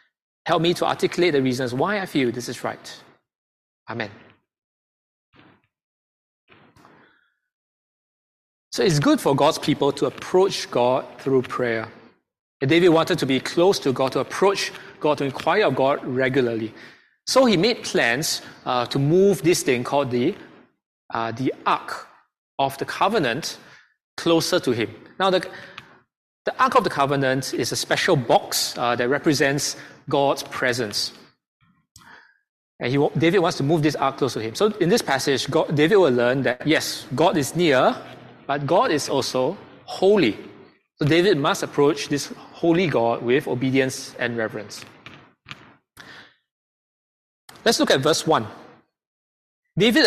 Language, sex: English, male